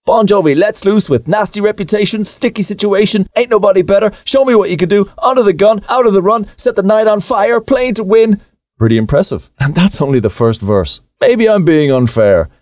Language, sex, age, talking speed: English, male, 30-49, 215 wpm